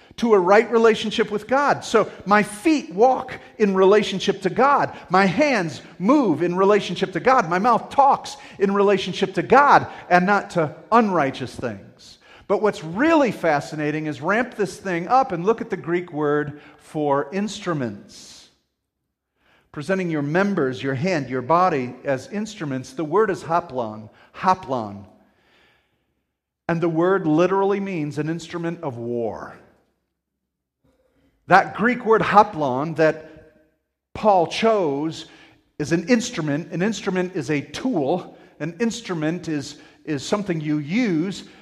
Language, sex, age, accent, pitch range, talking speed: English, male, 40-59, American, 150-205 Hz, 135 wpm